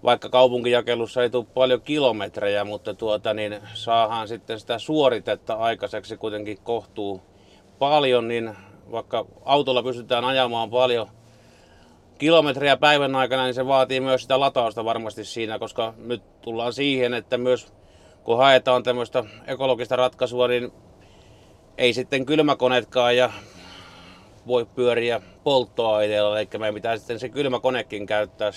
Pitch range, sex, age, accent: 105-125 Hz, male, 30-49, native